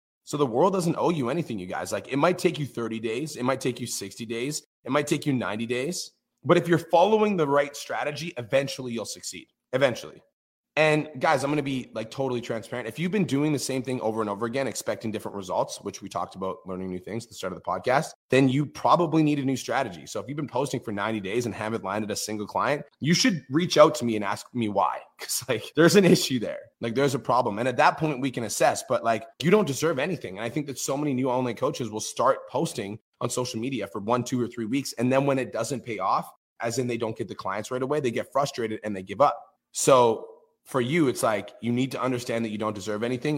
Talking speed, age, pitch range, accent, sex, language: 260 wpm, 30-49, 115-145 Hz, American, male, English